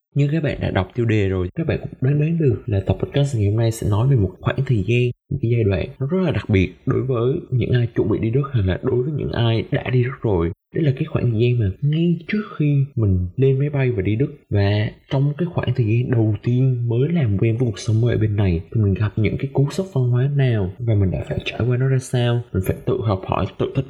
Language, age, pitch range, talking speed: Vietnamese, 20-39, 105-130 Hz, 290 wpm